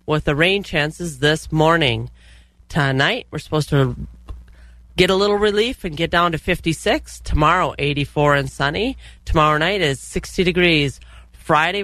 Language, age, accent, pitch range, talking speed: English, 30-49, American, 135-180 Hz, 145 wpm